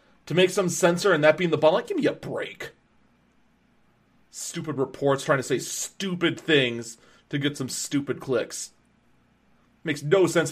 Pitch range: 150-195 Hz